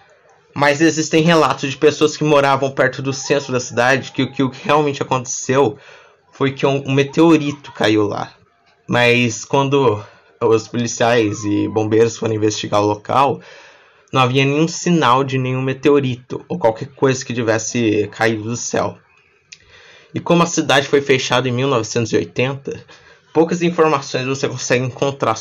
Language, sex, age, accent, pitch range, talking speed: Portuguese, male, 20-39, Brazilian, 120-155 Hz, 145 wpm